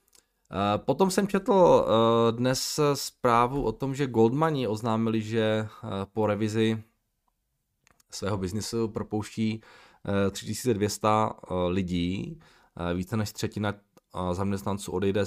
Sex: male